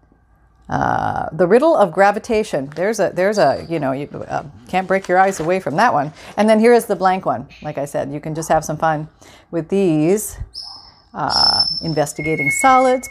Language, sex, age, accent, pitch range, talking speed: English, female, 40-59, American, 175-225 Hz, 190 wpm